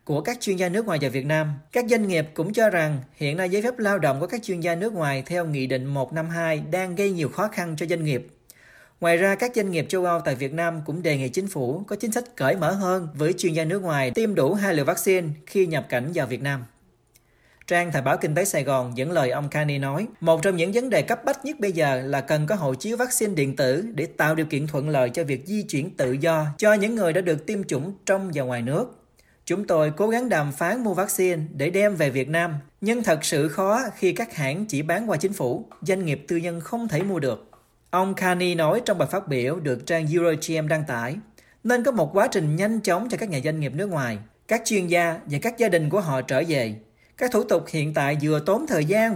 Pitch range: 145-200 Hz